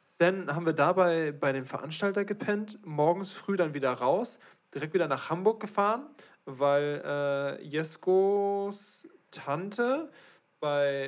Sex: male